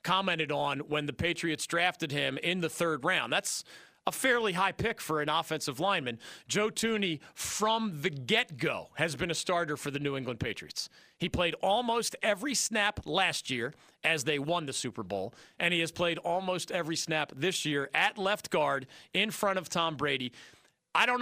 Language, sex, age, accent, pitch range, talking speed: English, male, 40-59, American, 160-210 Hz, 185 wpm